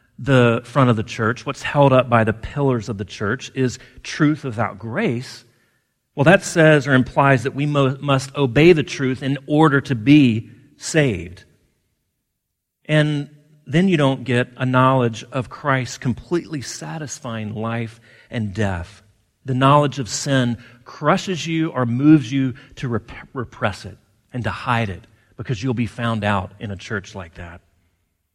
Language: English